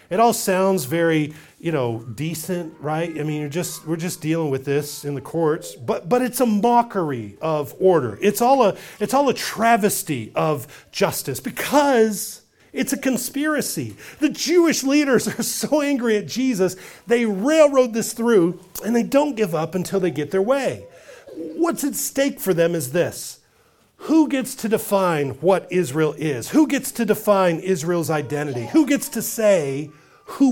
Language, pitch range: English, 160-230 Hz